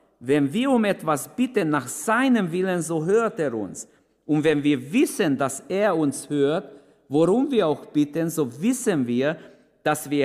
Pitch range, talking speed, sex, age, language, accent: 110-155 Hz, 170 wpm, male, 50-69, German, German